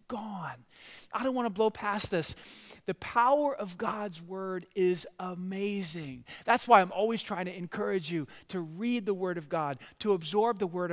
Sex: male